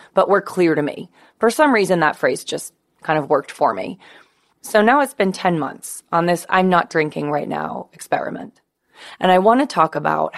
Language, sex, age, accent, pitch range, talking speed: English, female, 20-39, American, 150-195 Hz, 210 wpm